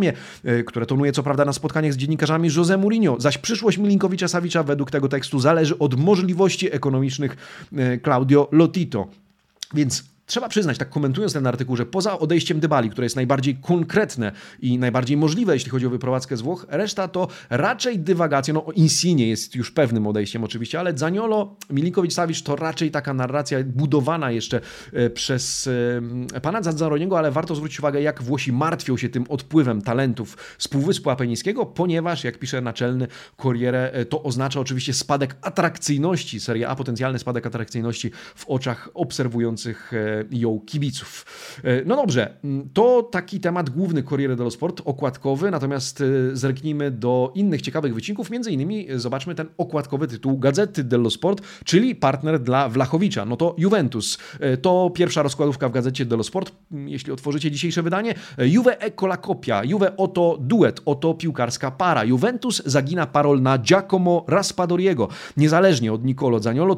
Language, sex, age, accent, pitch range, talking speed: Polish, male, 30-49, native, 130-175 Hz, 150 wpm